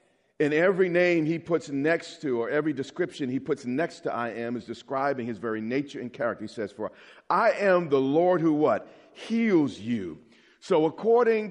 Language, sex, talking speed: English, male, 190 wpm